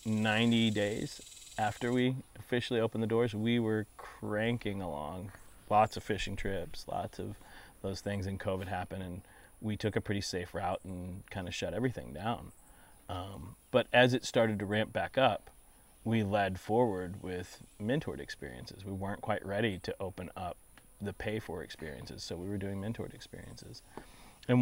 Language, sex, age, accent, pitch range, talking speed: English, male, 30-49, American, 90-110 Hz, 170 wpm